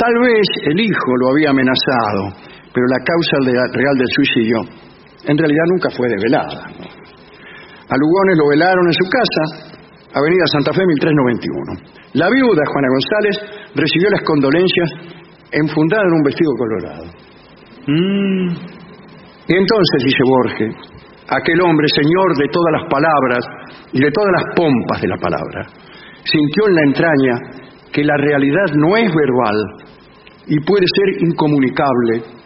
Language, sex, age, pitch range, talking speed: English, male, 50-69, 130-175 Hz, 135 wpm